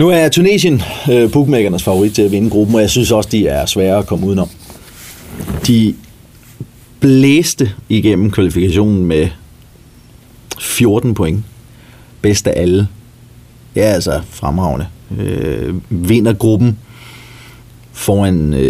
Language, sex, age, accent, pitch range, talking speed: Danish, male, 30-49, native, 95-120 Hz, 110 wpm